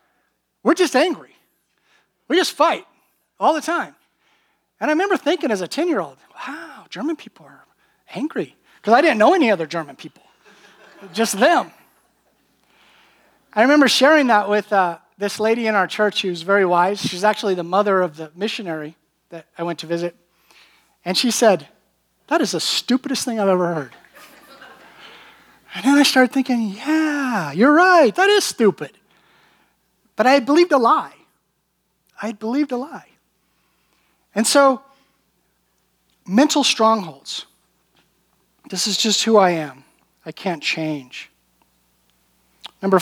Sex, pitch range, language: male, 190-275 Hz, English